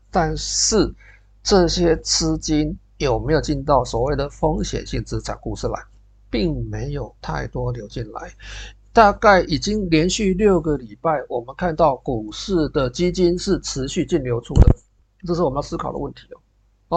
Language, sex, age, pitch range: Chinese, male, 50-69, 120-180 Hz